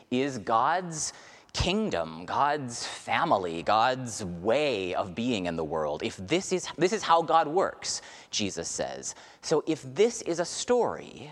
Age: 30-49